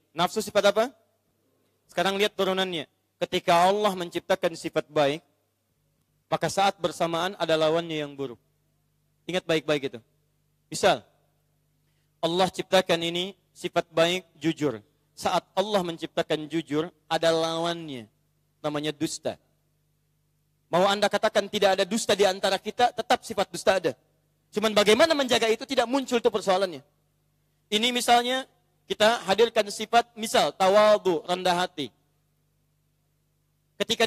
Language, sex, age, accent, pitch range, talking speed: Indonesian, male, 30-49, native, 150-215 Hz, 120 wpm